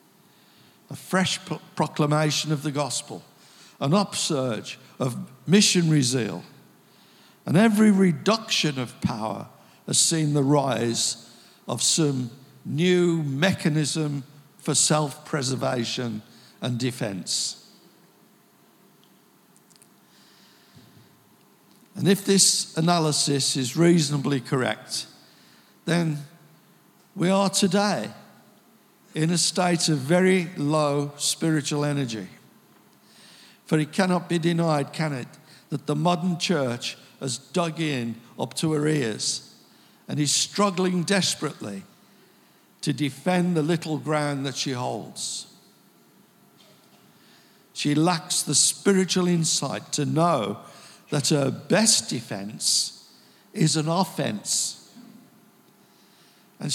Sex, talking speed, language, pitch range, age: male, 95 wpm, English, 140-180 Hz, 60-79